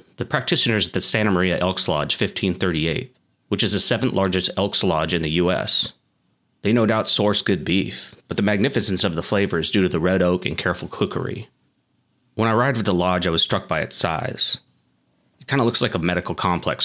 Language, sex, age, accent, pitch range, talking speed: English, male, 30-49, American, 85-110 Hz, 215 wpm